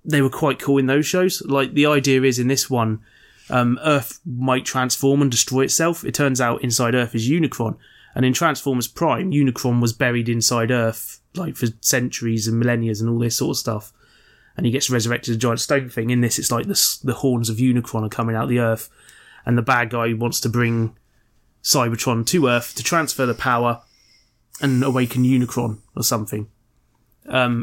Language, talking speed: English, 200 wpm